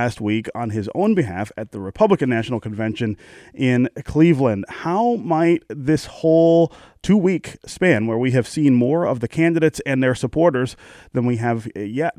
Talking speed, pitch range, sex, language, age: 170 wpm, 115-150 Hz, male, English, 30-49